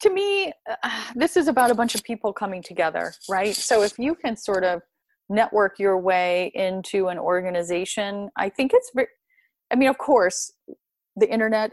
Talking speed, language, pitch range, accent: 175 wpm, English, 180-250 Hz, American